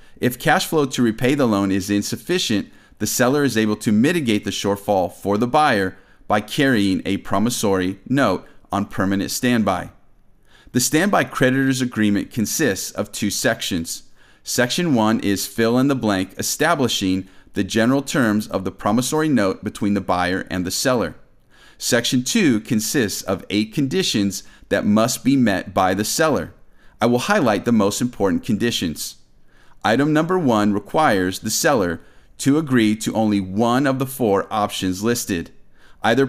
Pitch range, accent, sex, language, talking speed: 100-130 Hz, American, male, English, 155 wpm